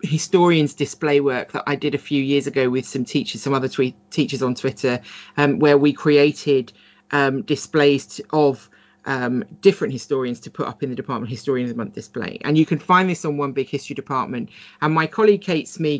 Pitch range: 140-160 Hz